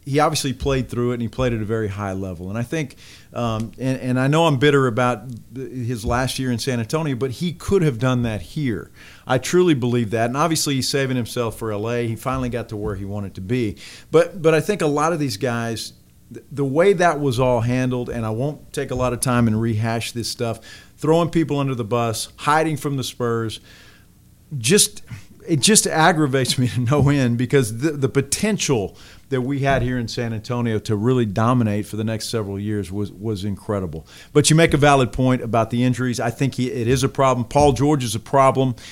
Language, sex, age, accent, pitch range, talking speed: English, male, 50-69, American, 115-150 Hz, 230 wpm